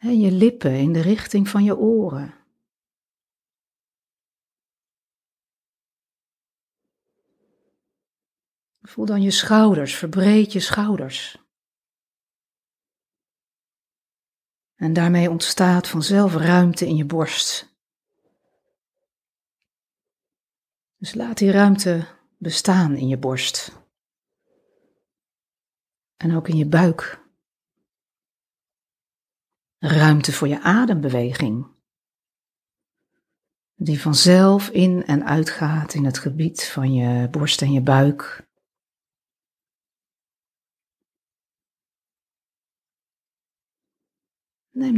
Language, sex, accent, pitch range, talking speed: Dutch, female, Dutch, 155-200 Hz, 75 wpm